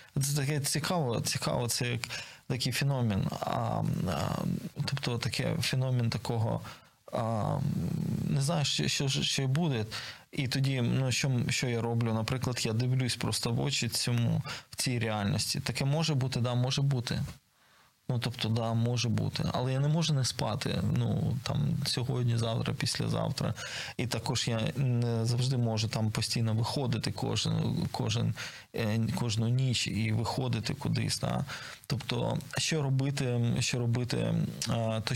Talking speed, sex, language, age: 135 wpm, male, Ukrainian, 20-39